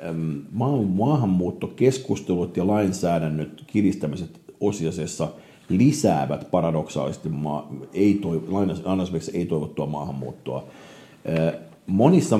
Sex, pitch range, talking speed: male, 80-100 Hz, 70 wpm